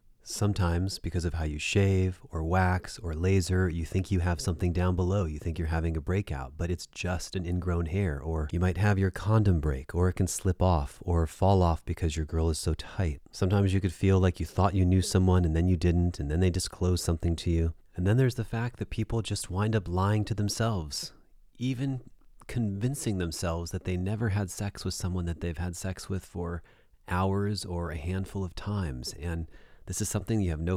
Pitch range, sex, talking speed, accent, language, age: 85-100 Hz, male, 220 wpm, American, English, 30-49